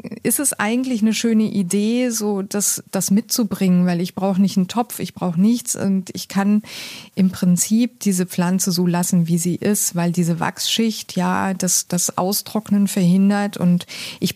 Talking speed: 170 wpm